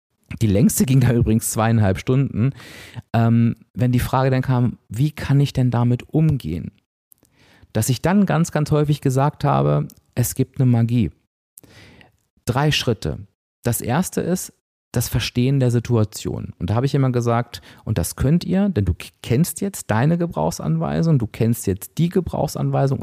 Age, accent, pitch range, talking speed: 40-59, German, 100-135 Hz, 155 wpm